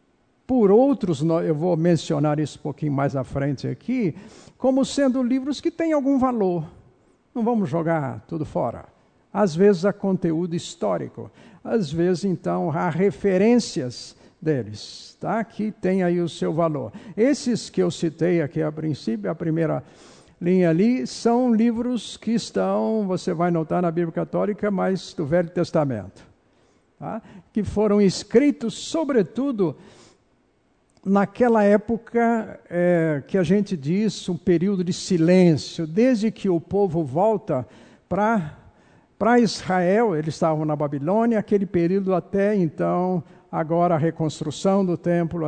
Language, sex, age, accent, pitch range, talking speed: Portuguese, male, 60-79, Brazilian, 160-210 Hz, 135 wpm